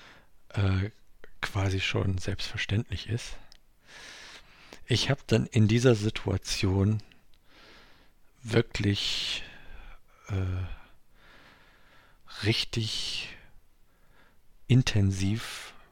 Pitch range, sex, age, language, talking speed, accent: 95-110 Hz, male, 50-69, German, 55 wpm, German